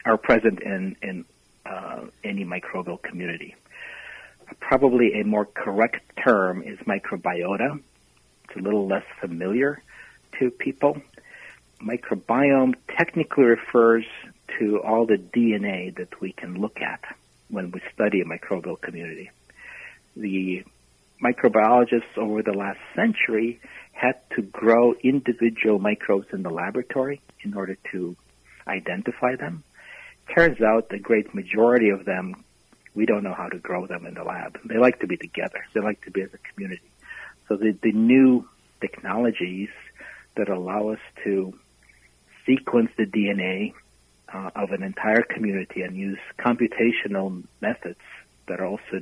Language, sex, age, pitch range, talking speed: English, male, 50-69, 95-120 Hz, 135 wpm